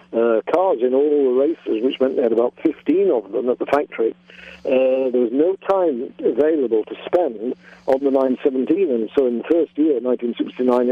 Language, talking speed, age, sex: English, 190 wpm, 50-69, male